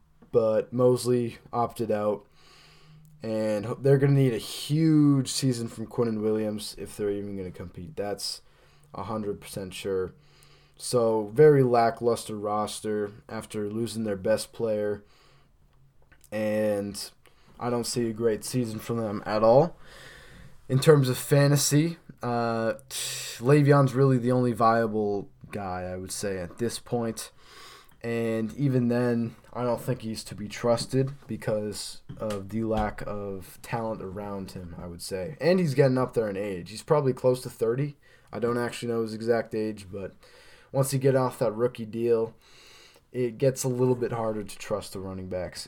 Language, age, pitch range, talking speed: English, 20-39, 105-130 Hz, 160 wpm